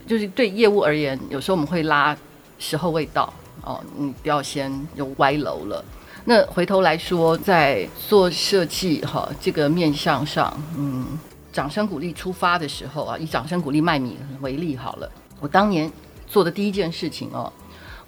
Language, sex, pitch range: Chinese, female, 140-180 Hz